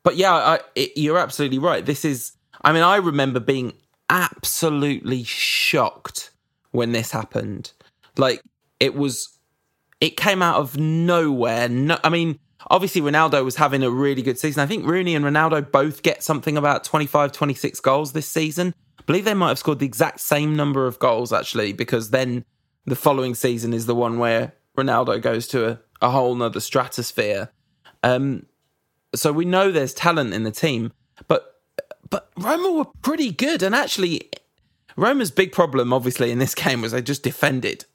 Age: 20-39